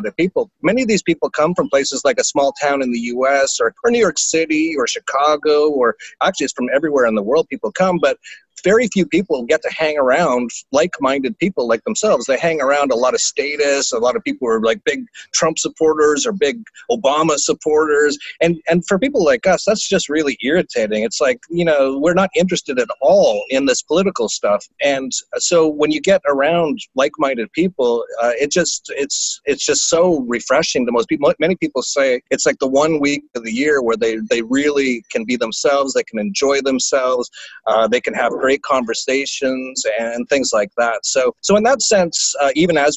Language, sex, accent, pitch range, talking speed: English, male, American, 135-210 Hz, 210 wpm